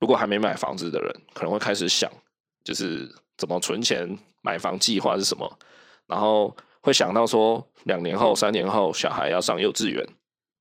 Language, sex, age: Chinese, male, 20-39